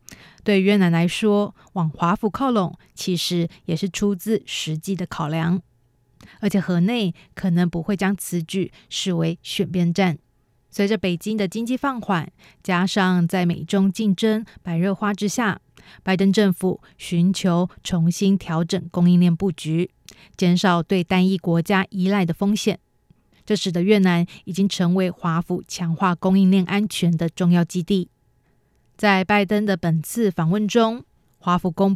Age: 30-49